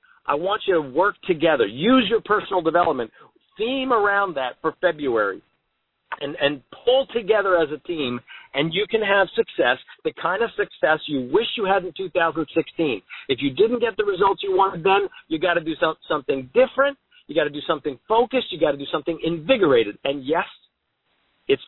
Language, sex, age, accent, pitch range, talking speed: English, male, 50-69, American, 165-255 Hz, 190 wpm